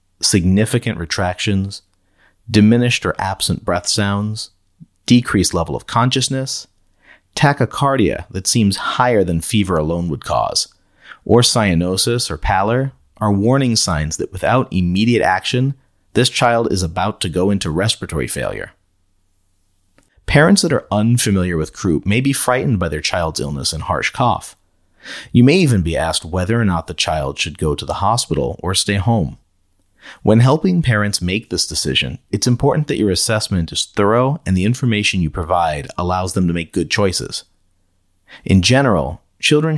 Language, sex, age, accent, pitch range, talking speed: English, male, 40-59, American, 90-115 Hz, 150 wpm